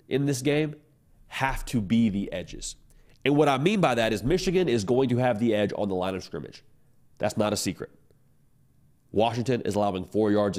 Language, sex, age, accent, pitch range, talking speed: English, male, 30-49, American, 105-140 Hz, 205 wpm